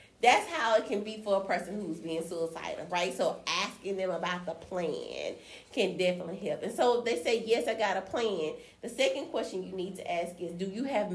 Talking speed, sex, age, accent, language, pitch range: 225 wpm, female, 30-49, American, English, 185-230 Hz